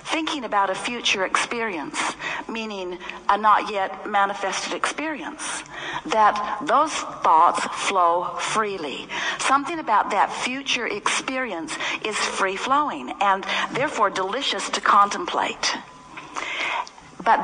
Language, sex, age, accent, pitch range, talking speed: English, female, 60-79, American, 195-300 Hz, 95 wpm